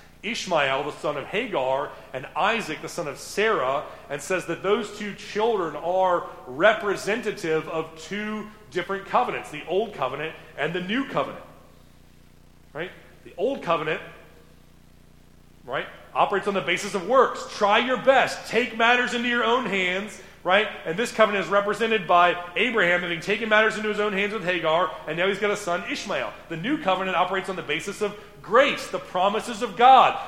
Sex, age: male, 30-49